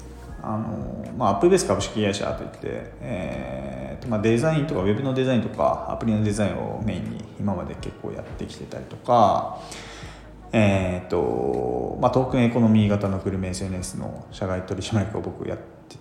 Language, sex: Japanese, male